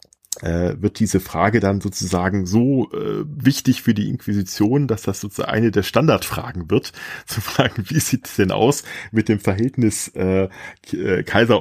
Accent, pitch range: German, 95-120 Hz